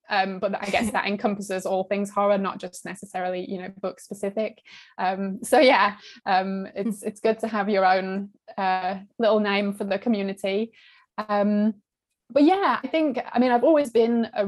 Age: 20-39